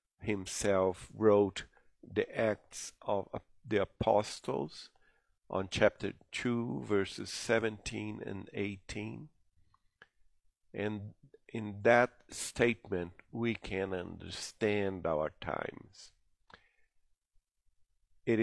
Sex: male